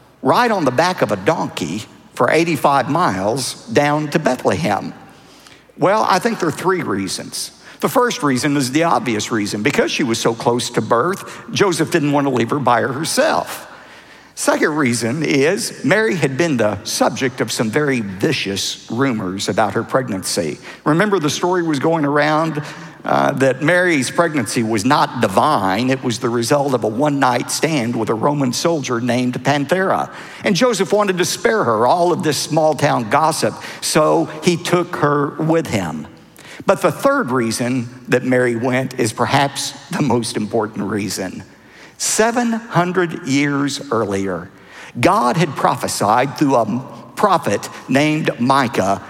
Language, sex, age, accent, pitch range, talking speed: English, male, 50-69, American, 120-165 Hz, 155 wpm